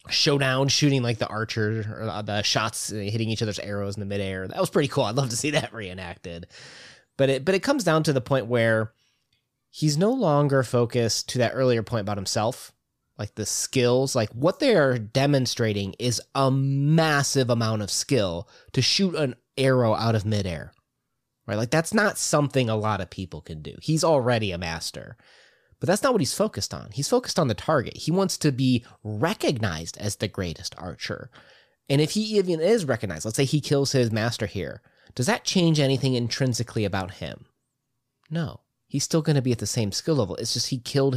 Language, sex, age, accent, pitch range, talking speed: English, male, 20-39, American, 105-135 Hz, 195 wpm